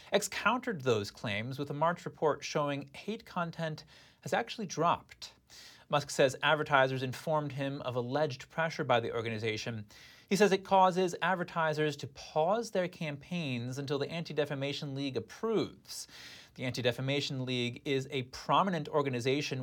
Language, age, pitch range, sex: English, 30-49, 130-170 Hz, male